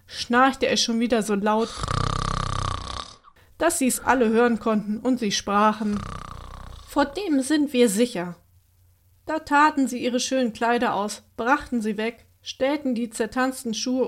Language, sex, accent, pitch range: German, female, German, 210-260 Hz